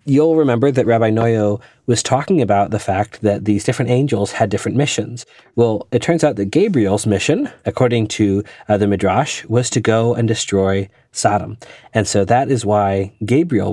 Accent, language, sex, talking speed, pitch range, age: American, English, male, 180 wpm, 105-130 Hz, 30-49